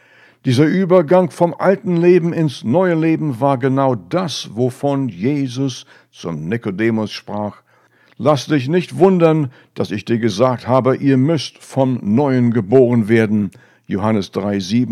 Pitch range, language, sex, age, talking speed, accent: 115-150 Hz, German, male, 60-79, 130 wpm, German